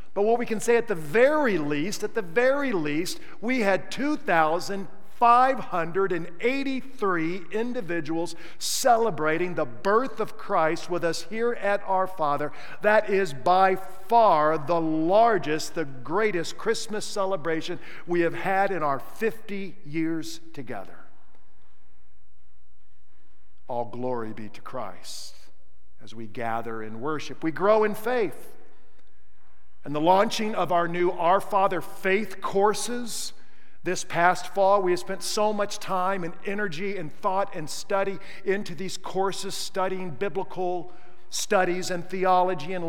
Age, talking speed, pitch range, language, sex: 50-69, 130 wpm, 165-195 Hz, English, male